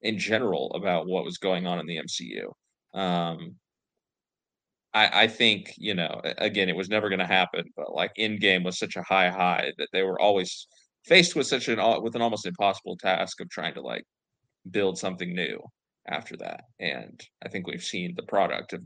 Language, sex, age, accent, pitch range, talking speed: English, male, 30-49, American, 90-100 Hz, 195 wpm